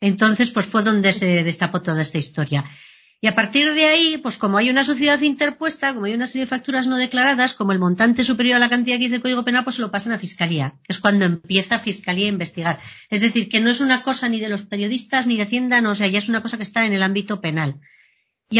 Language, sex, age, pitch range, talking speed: Spanish, female, 40-59, 190-260 Hz, 260 wpm